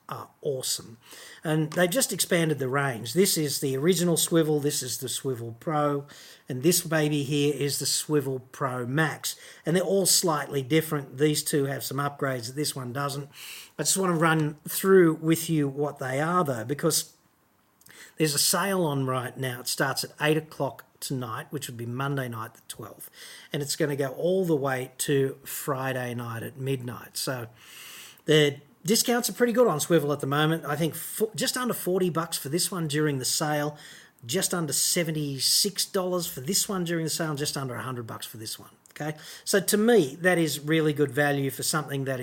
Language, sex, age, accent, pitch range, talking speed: English, male, 40-59, Australian, 135-165 Hz, 195 wpm